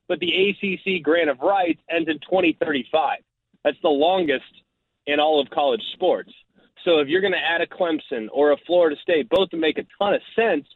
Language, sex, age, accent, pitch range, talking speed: English, male, 30-49, American, 145-190 Hz, 200 wpm